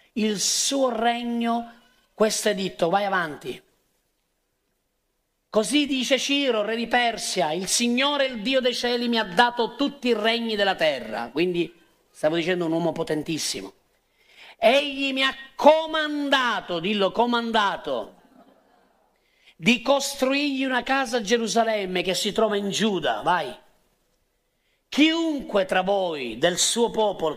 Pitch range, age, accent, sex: 180-235 Hz, 40-59, native, male